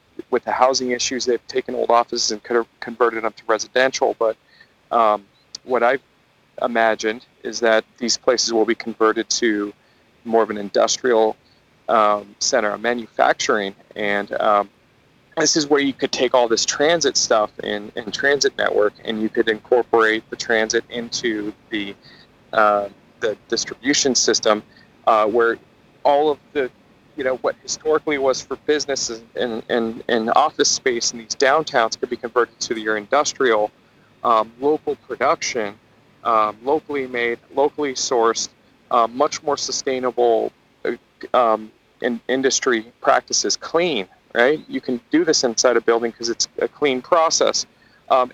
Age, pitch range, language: 40-59, 110-135 Hz, English